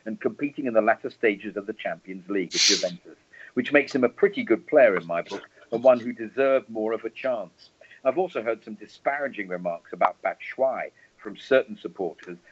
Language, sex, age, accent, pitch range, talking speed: English, male, 50-69, British, 110-150 Hz, 195 wpm